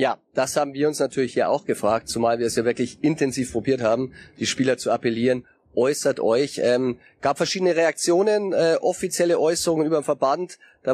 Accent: German